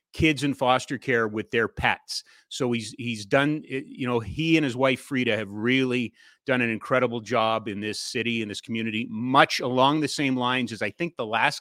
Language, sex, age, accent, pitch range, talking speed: English, male, 30-49, American, 130-185 Hz, 205 wpm